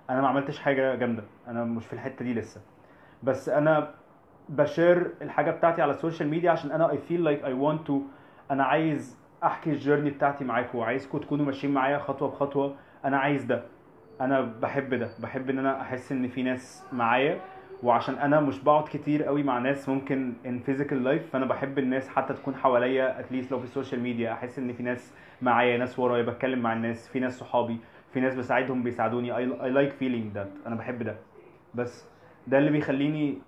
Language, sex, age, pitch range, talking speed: Arabic, male, 20-39, 125-145 Hz, 185 wpm